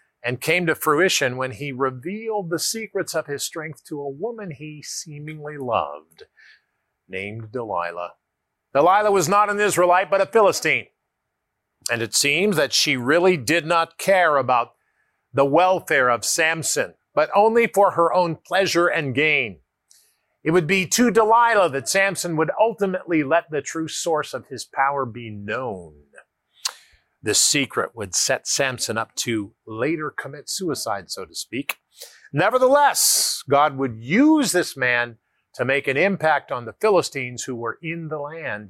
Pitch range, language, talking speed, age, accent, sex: 130-185 Hz, English, 155 wpm, 50-69, American, male